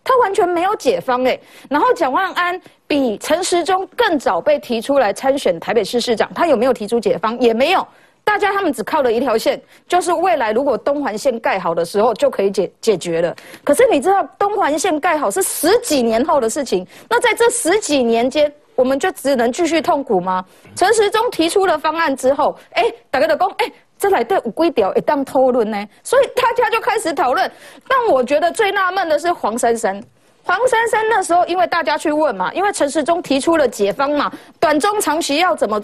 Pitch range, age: 255-380 Hz, 30-49